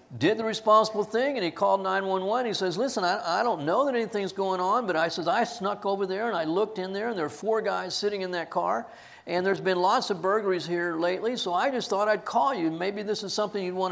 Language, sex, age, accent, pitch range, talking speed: English, male, 50-69, American, 185-245 Hz, 265 wpm